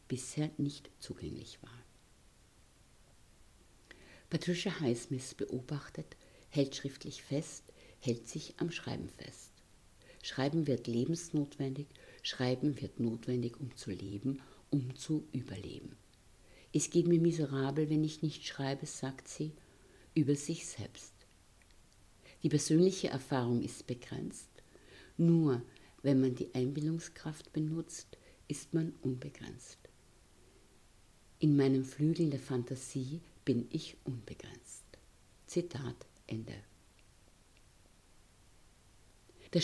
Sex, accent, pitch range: female, German, 120-155 Hz